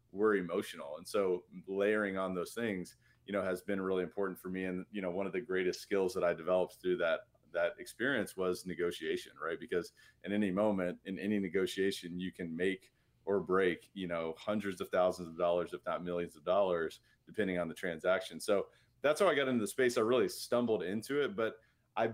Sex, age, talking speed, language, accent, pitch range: male, 30-49, 210 wpm, English, American, 90-110 Hz